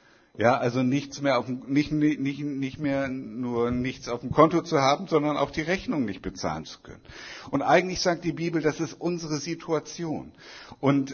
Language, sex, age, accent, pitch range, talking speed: German, male, 60-79, German, 135-160 Hz, 185 wpm